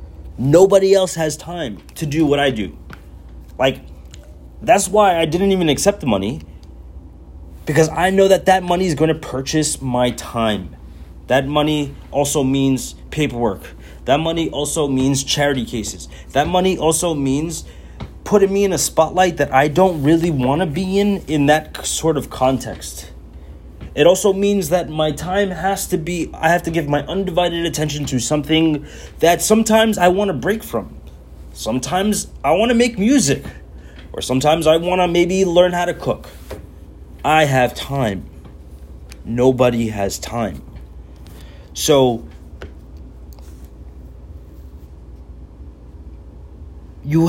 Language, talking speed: English, 140 wpm